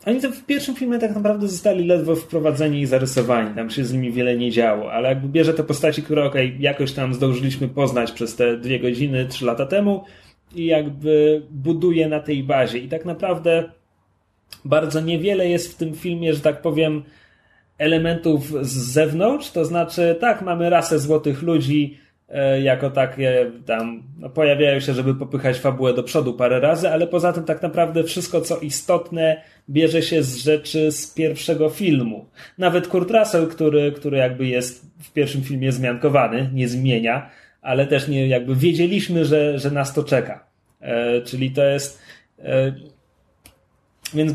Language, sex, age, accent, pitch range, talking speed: Polish, male, 30-49, native, 135-175 Hz, 165 wpm